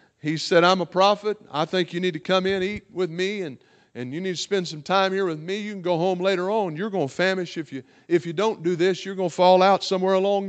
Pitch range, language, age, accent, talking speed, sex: 125-185 Hz, English, 50-69, American, 285 wpm, male